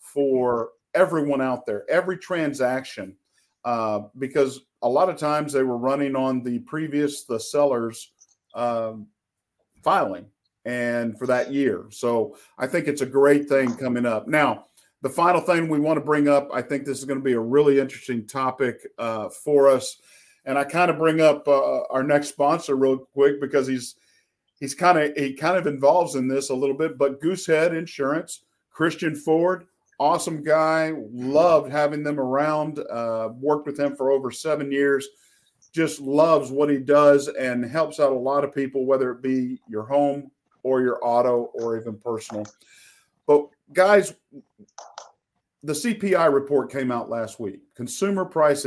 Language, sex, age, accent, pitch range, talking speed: English, male, 50-69, American, 125-155 Hz, 170 wpm